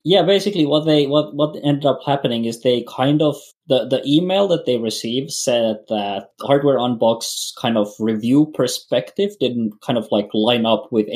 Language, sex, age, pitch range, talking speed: English, male, 20-39, 110-140 Hz, 185 wpm